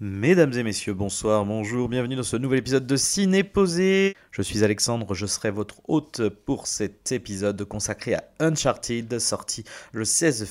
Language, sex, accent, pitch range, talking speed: French, male, French, 100-130 Hz, 160 wpm